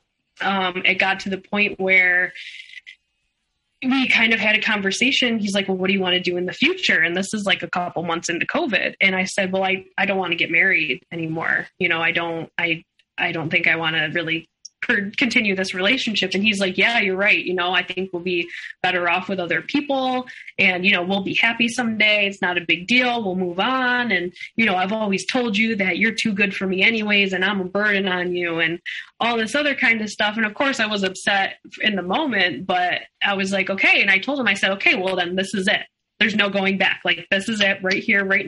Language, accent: English, American